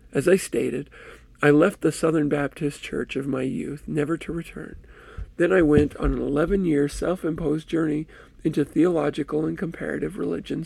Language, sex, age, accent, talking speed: English, male, 50-69, American, 170 wpm